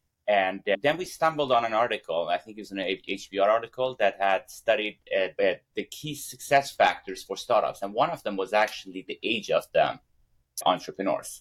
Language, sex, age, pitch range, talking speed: English, male, 30-49, 100-125 Hz, 190 wpm